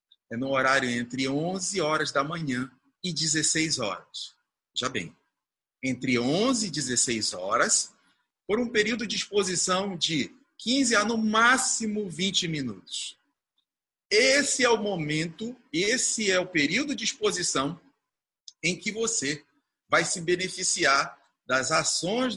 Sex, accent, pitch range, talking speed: male, Brazilian, 135-195 Hz, 130 wpm